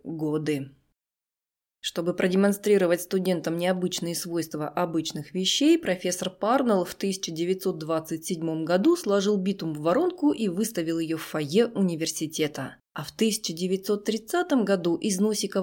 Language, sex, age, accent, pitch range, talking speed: Russian, female, 20-39, native, 170-230 Hz, 110 wpm